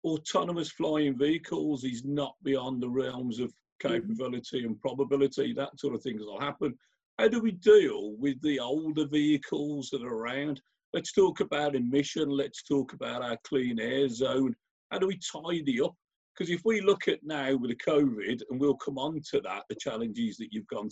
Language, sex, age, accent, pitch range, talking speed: English, male, 50-69, British, 130-165 Hz, 185 wpm